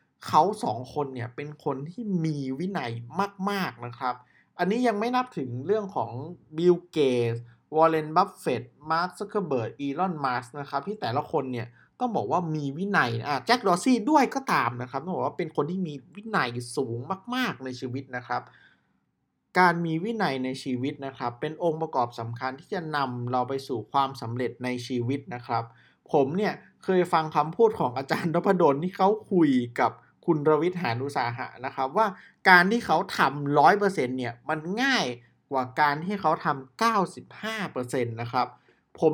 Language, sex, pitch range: Thai, male, 125-185 Hz